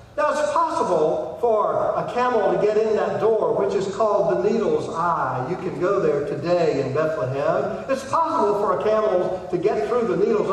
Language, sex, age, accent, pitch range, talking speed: English, male, 50-69, American, 170-260 Hz, 190 wpm